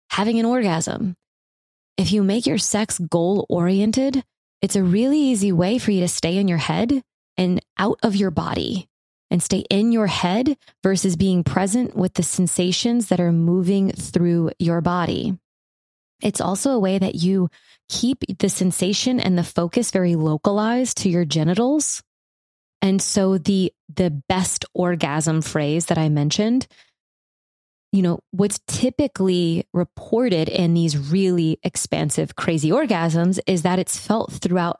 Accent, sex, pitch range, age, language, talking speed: American, female, 165-195 Hz, 20-39, English, 150 wpm